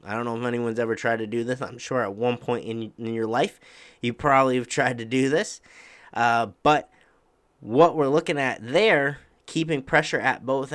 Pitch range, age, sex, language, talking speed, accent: 110-135 Hz, 30-49, male, English, 205 wpm, American